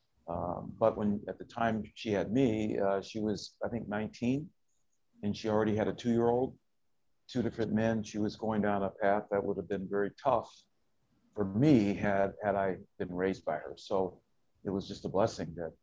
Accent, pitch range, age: American, 95-120 Hz, 50-69